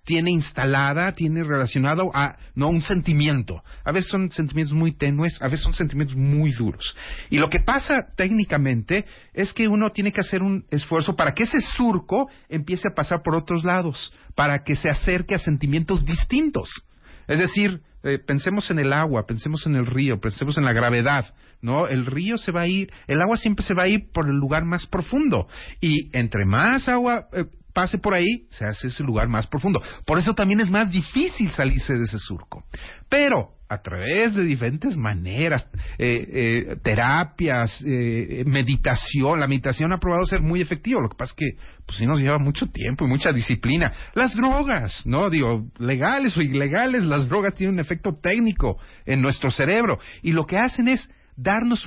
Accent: Mexican